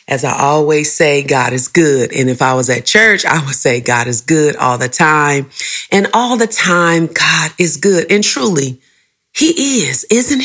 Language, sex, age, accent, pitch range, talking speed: English, female, 40-59, American, 130-170 Hz, 195 wpm